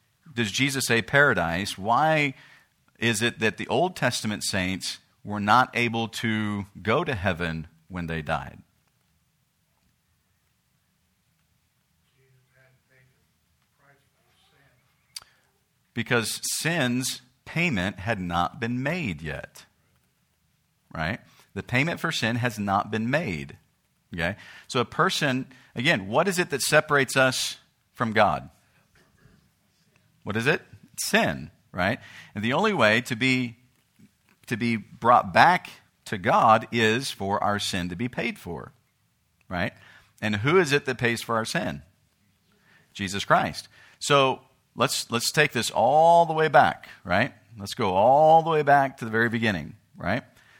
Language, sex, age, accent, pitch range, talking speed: English, male, 50-69, American, 105-135 Hz, 130 wpm